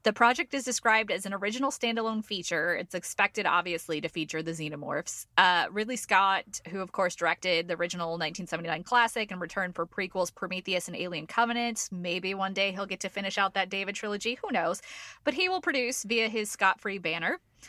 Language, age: English, 20-39